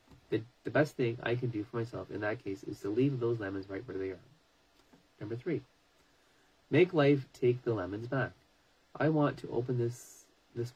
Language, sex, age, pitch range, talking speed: English, male, 30-49, 100-130 Hz, 195 wpm